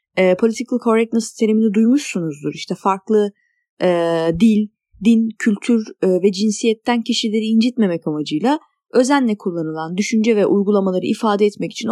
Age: 30-49